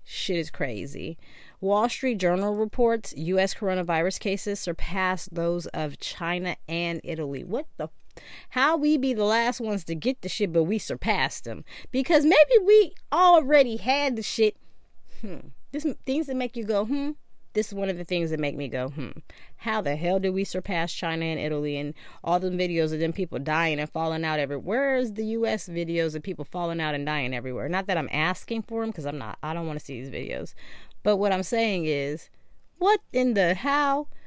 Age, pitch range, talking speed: 30-49, 155-215 Hz, 200 wpm